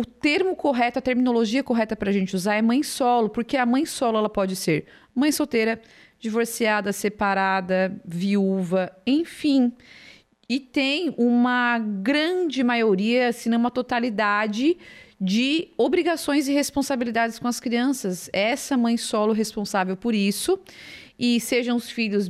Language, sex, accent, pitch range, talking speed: Portuguese, female, Brazilian, 195-255 Hz, 145 wpm